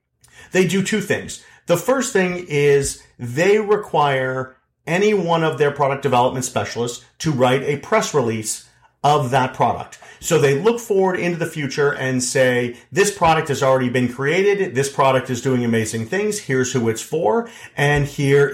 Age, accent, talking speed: 40-59, American, 170 wpm